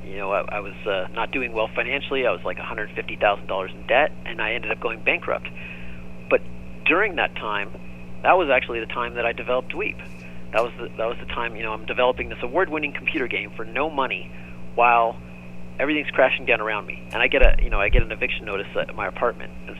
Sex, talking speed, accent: male, 235 wpm, American